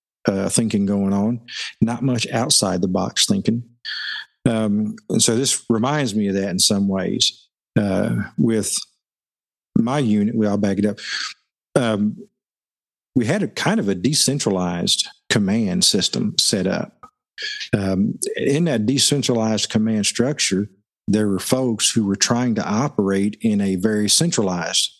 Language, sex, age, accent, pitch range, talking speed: English, male, 50-69, American, 105-125 Hz, 145 wpm